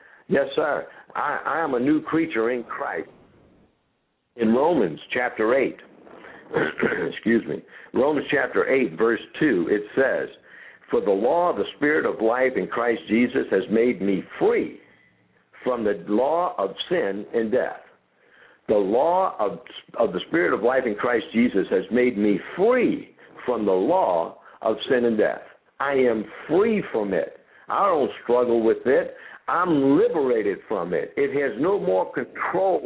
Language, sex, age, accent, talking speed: English, male, 60-79, American, 155 wpm